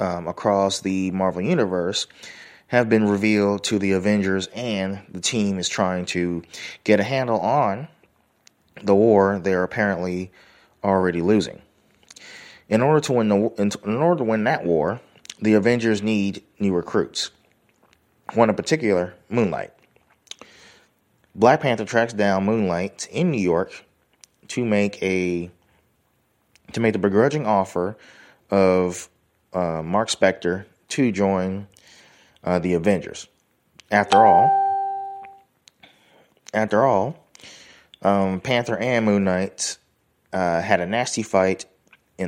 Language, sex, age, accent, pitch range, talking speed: English, male, 30-49, American, 90-110 Hz, 125 wpm